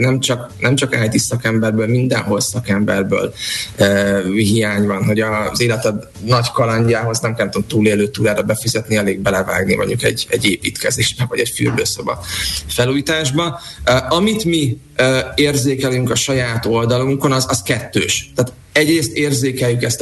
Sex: male